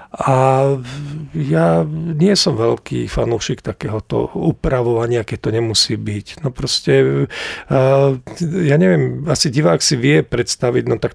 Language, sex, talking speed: Slovak, male, 125 wpm